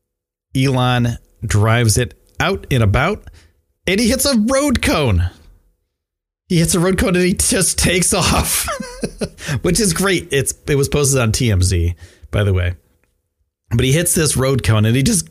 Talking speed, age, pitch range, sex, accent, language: 170 wpm, 30-49, 85-130 Hz, male, American, English